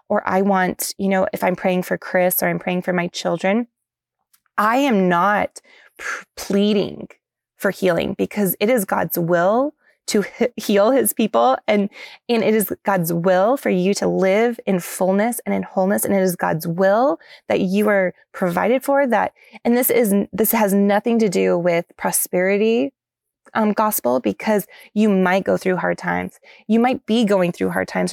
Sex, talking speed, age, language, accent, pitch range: female, 180 wpm, 20-39, English, American, 185-230 Hz